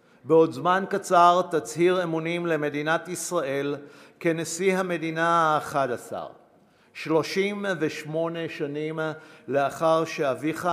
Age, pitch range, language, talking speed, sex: 50-69, 145-170 Hz, Hebrew, 85 wpm, male